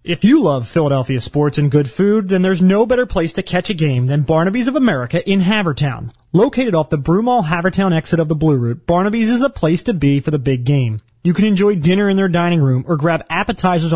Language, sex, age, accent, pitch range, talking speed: English, male, 30-49, American, 145-200 Hz, 230 wpm